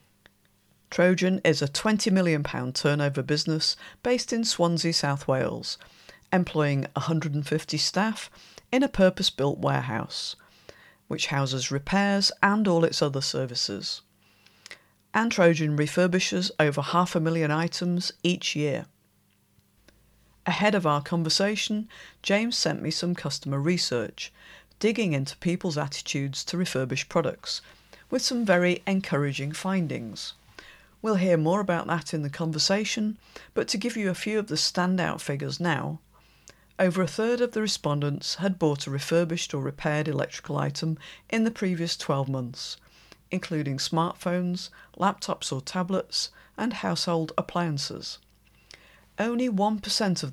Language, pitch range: English, 150-190 Hz